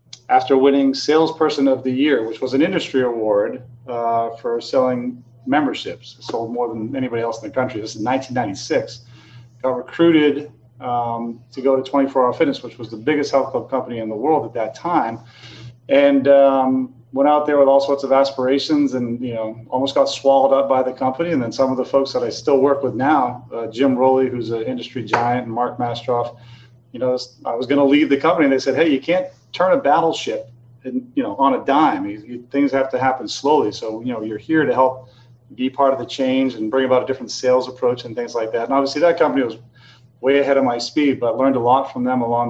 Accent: American